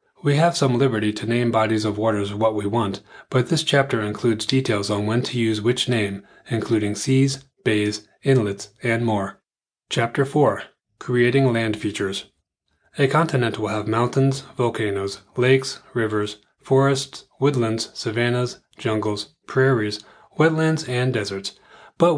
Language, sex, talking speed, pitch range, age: English, male, 140 wpm, 105-130 Hz, 30-49